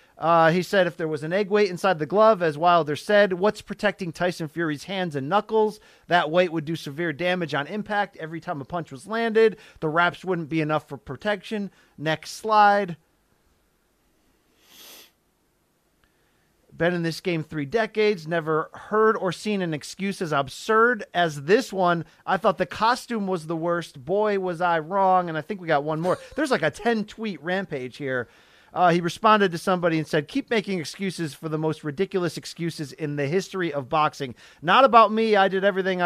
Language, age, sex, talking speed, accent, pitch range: English, 40-59, male, 185 wpm, American, 165-225 Hz